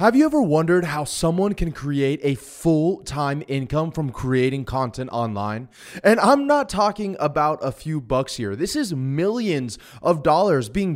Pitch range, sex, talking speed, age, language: 140-195 Hz, male, 165 wpm, 20-39, English